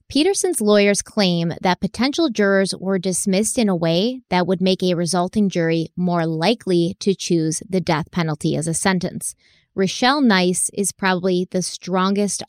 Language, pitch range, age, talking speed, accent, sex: English, 175-205 Hz, 20-39, 160 wpm, American, female